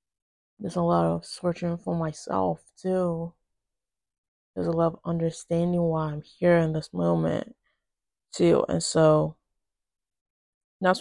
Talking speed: 125 wpm